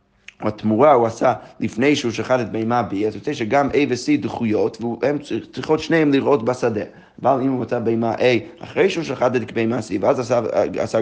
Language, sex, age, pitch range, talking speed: Hebrew, male, 30-49, 110-135 Hz, 190 wpm